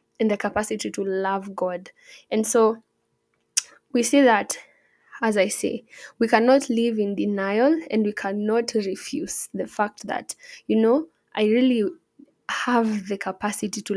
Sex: female